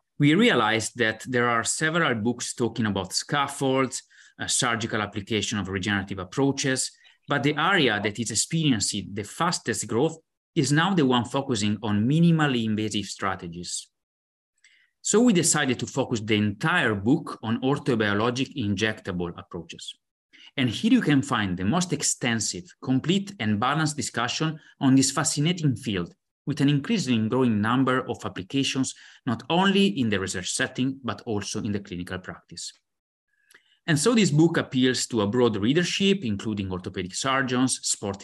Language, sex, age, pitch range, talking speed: English, male, 30-49, 105-145 Hz, 145 wpm